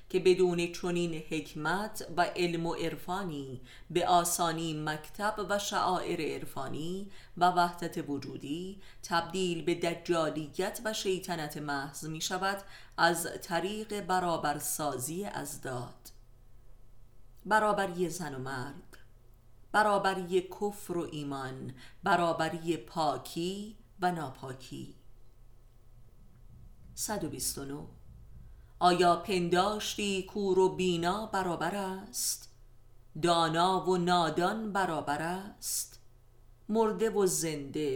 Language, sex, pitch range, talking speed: Persian, female, 140-185 Hz, 90 wpm